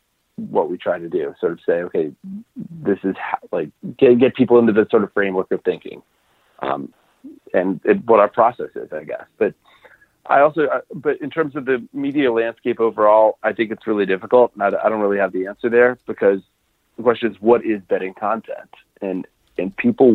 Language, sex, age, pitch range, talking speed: English, male, 40-59, 100-155 Hz, 205 wpm